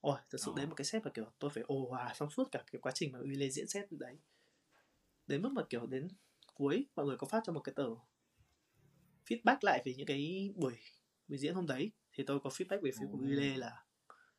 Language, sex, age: Vietnamese, male, 20-39